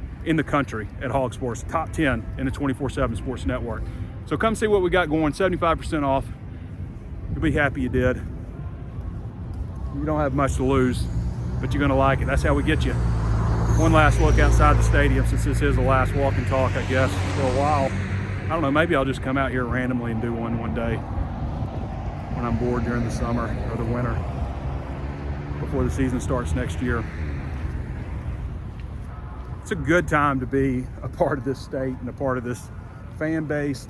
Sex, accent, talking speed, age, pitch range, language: male, American, 195 wpm, 30-49, 110-145 Hz, English